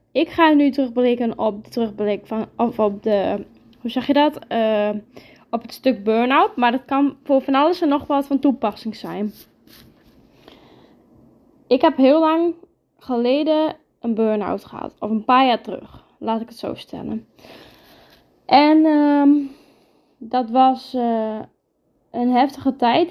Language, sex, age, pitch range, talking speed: Dutch, female, 10-29, 235-285 Hz, 125 wpm